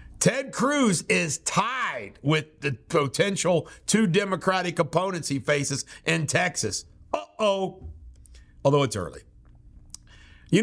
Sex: male